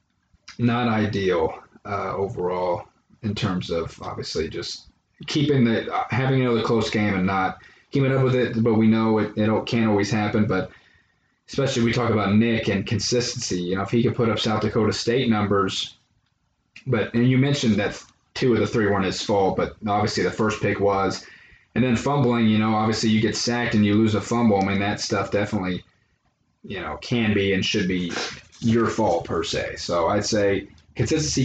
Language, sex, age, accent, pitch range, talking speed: English, male, 20-39, American, 100-115 Hz, 195 wpm